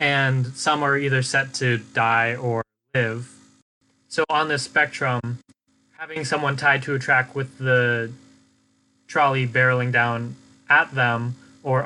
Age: 20-39